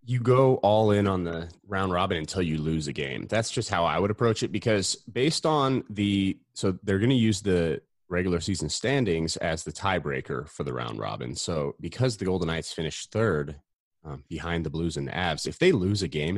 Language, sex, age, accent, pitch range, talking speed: English, male, 30-49, American, 85-115 Hz, 215 wpm